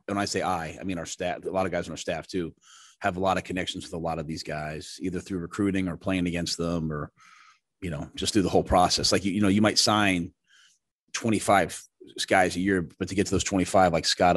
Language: English